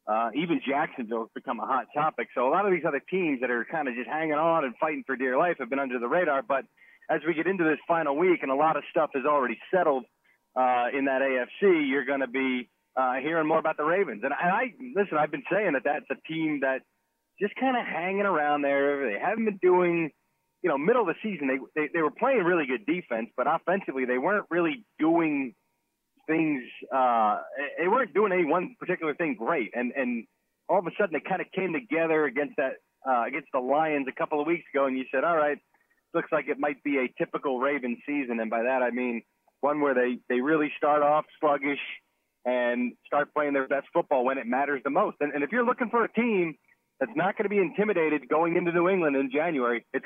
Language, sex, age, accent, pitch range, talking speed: English, male, 30-49, American, 135-180 Hz, 235 wpm